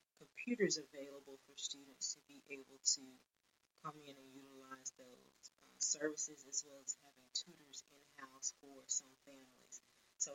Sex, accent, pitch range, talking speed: female, American, 135-150 Hz, 145 wpm